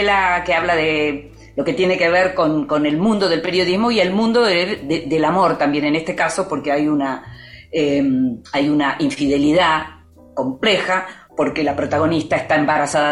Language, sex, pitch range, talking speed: Spanish, female, 150-200 Hz, 180 wpm